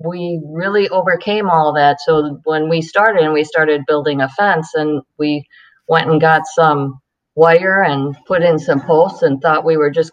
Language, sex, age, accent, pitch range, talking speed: English, female, 50-69, American, 145-165 Hz, 190 wpm